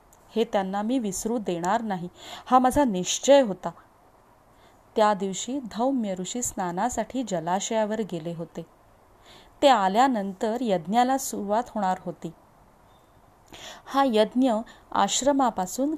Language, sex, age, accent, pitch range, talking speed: Marathi, female, 30-49, native, 190-250 Hz, 100 wpm